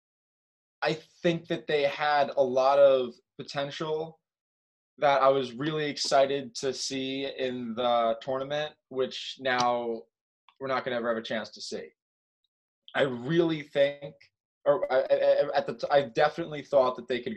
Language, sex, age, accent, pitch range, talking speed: English, male, 20-39, American, 125-150 Hz, 145 wpm